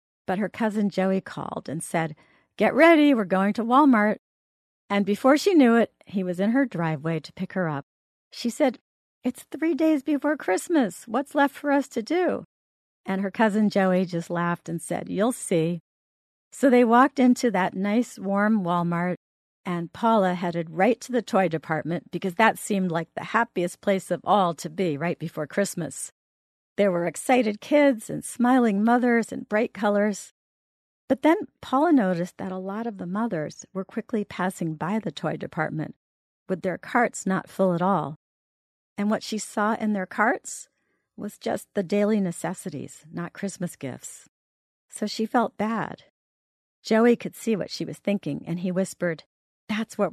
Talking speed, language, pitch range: 175 wpm, English, 170-235 Hz